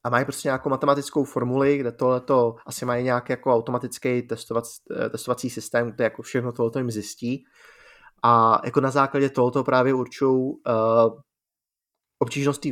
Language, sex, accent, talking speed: Czech, male, native, 145 wpm